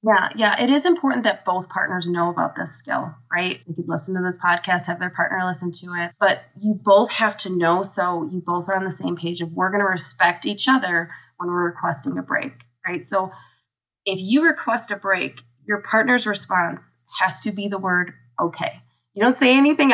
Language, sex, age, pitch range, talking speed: English, female, 20-39, 175-205 Hz, 215 wpm